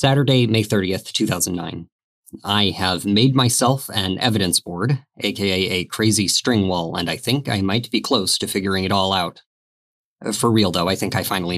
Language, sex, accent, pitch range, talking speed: English, male, American, 105-135 Hz, 180 wpm